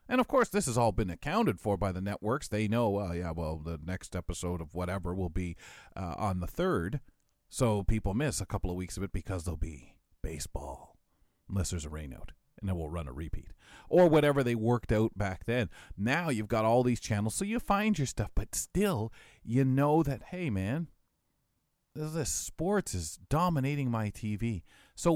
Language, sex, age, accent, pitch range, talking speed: English, male, 40-59, American, 95-150 Hz, 200 wpm